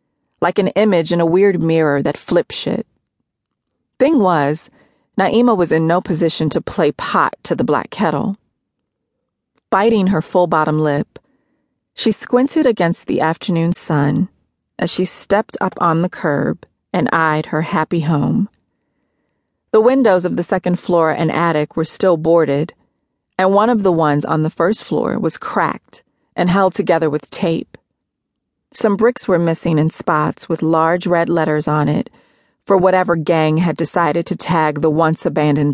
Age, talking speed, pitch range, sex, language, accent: 40-59, 160 wpm, 160-200 Hz, female, English, American